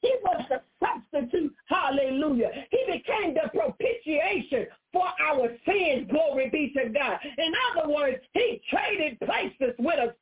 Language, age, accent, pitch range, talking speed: English, 40-59, American, 285-395 Hz, 140 wpm